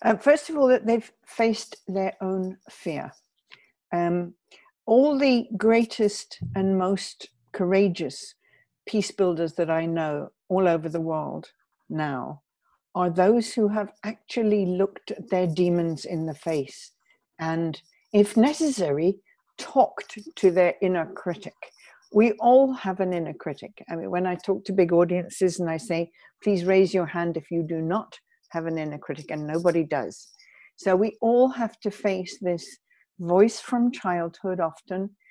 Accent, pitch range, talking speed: British, 170-225 Hz, 155 wpm